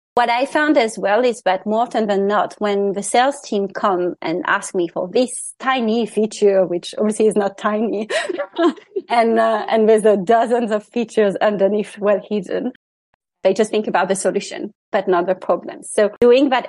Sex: female